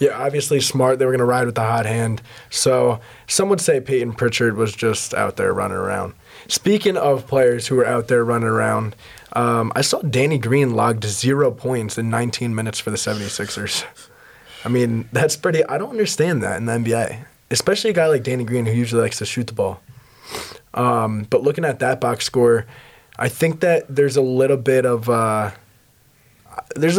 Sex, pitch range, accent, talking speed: male, 115-140 Hz, American, 195 wpm